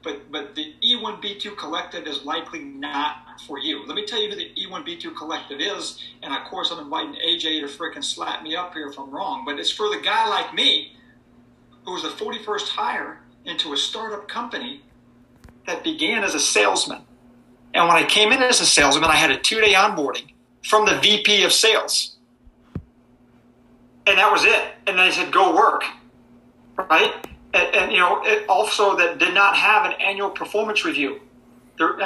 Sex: male